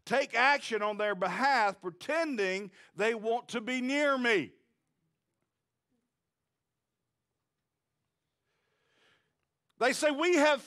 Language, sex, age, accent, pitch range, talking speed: English, male, 50-69, American, 235-310 Hz, 90 wpm